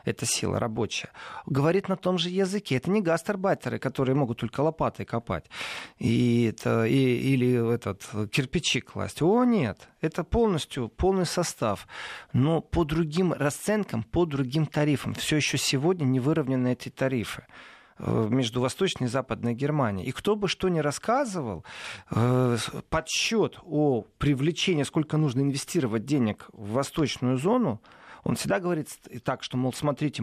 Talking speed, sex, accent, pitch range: 140 wpm, male, native, 120-160 Hz